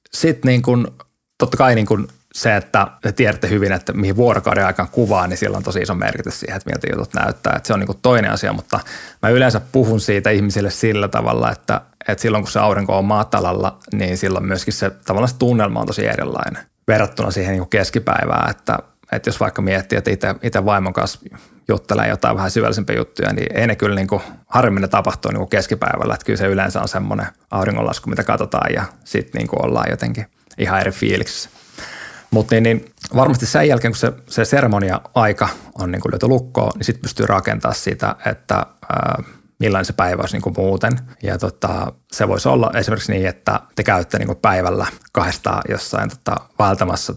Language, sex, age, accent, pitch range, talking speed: Finnish, male, 20-39, native, 95-115 Hz, 175 wpm